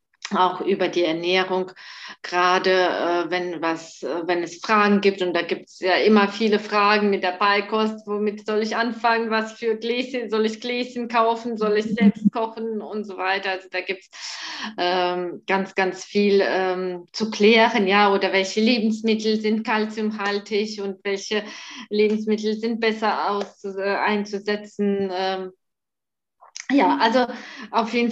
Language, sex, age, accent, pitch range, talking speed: German, female, 20-39, German, 205-245 Hz, 155 wpm